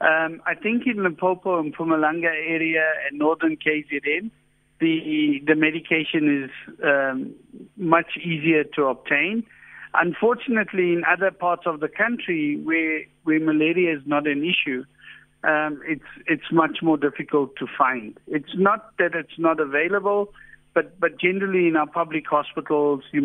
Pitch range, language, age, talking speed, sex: 145-180 Hz, English, 60-79, 140 wpm, male